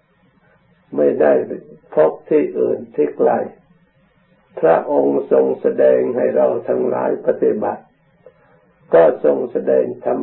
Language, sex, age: Thai, male, 60-79